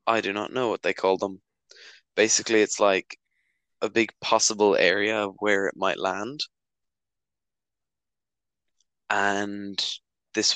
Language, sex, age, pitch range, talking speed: English, male, 10-29, 95-110 Hz, 120 wpm